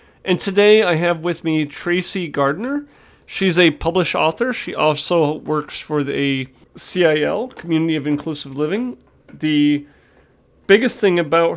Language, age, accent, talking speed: English, 40-59, American, 135 wpm